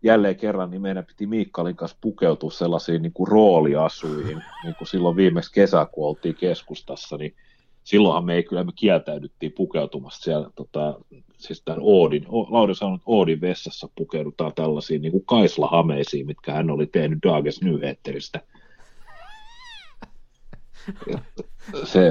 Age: 30-49